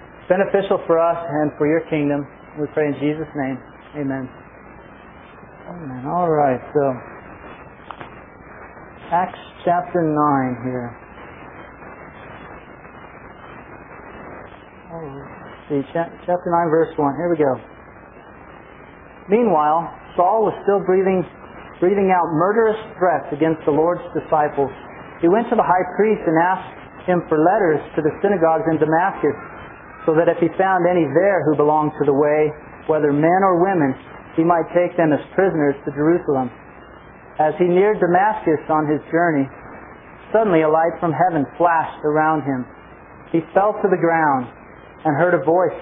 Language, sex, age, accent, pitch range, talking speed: English, male, 40-59, American, 145-175 Hz, 145 wpm